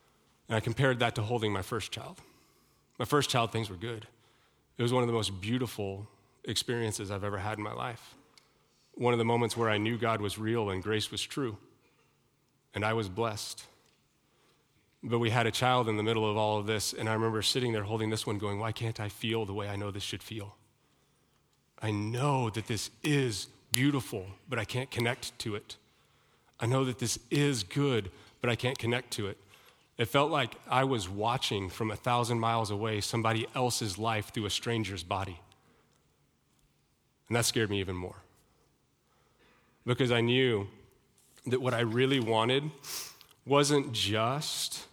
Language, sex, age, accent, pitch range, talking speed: English, male, 30-49, American, 105-125 Hz, 185 wpm